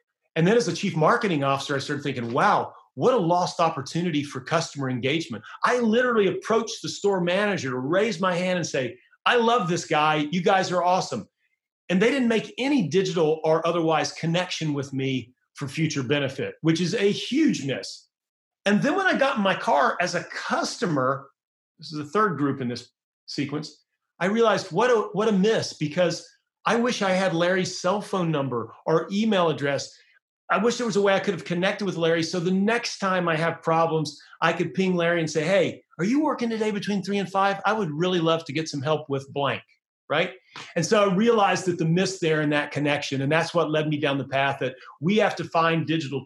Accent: American